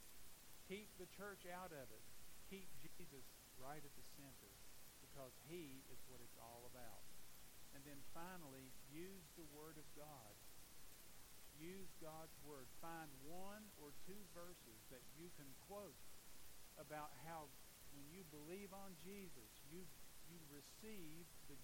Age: 50-69